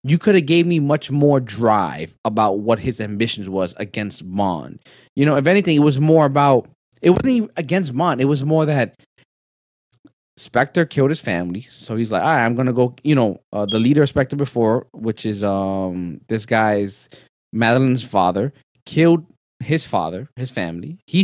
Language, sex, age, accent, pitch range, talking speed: English, male, 20-39, American, 115-165 Hz, 185 wpm